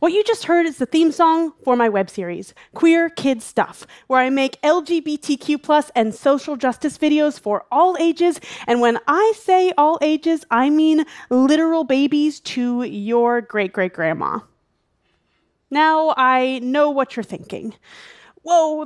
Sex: female